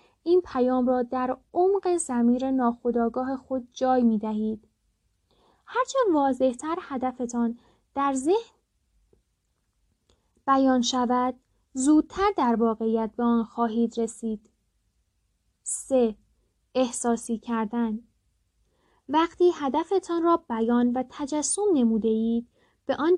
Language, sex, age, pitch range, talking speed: Persian, female, 10-29, 235-285 Hz, 100 wpm